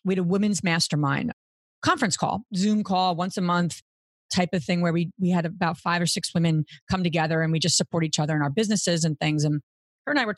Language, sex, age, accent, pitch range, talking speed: English, female, 40-59, American, 160-205 Hz, 245 wpm